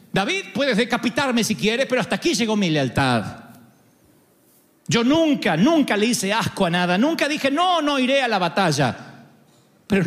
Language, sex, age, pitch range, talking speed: Spanish, male, 40-59, 165-235 Hz, 165 wpm